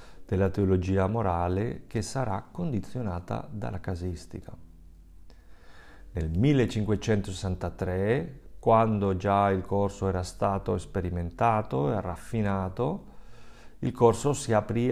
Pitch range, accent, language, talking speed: 90-115 Hz, native, Italian, 95 wpm